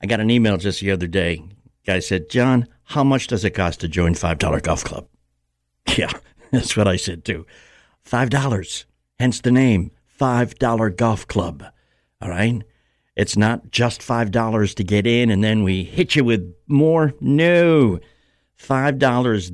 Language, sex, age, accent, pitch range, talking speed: English, male, 60-79, American, 90-120 Hz, 160 wpm